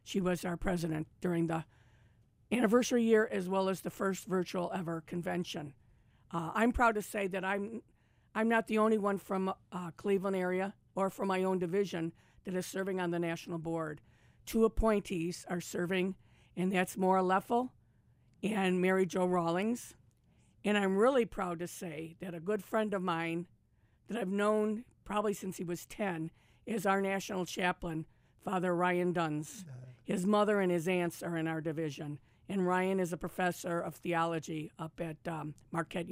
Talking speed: 170 wpm